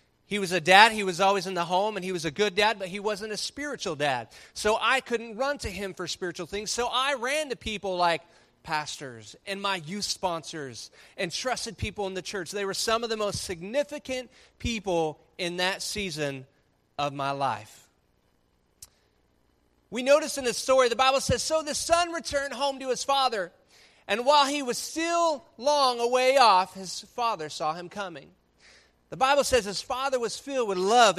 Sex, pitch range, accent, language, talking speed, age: male, 135-230 Hz, American, English, 190 wpm, 30-49